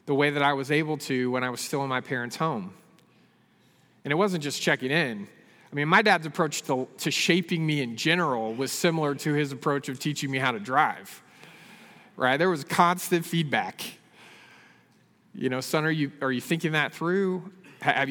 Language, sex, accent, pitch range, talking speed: English, male, American, 135-185 Hz, 195 wpm